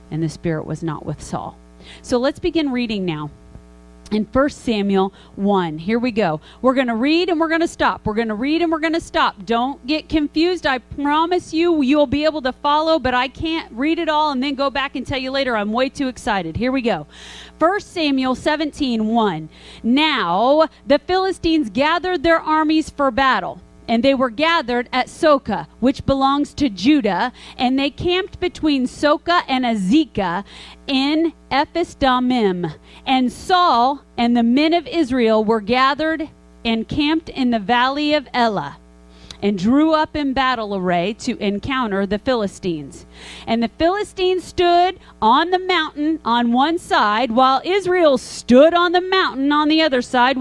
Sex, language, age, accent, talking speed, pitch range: female, English, 40-59, American, 175 wpm, 225-315 Hz